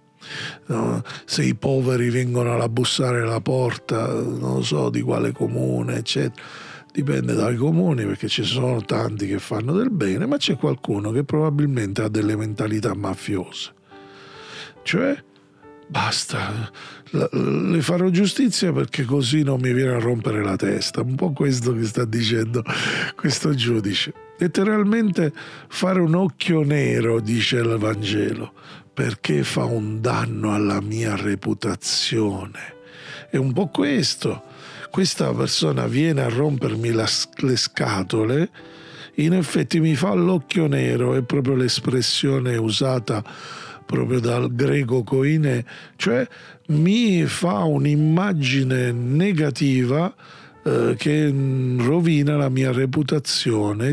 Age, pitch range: 40-59, 110-155 Hz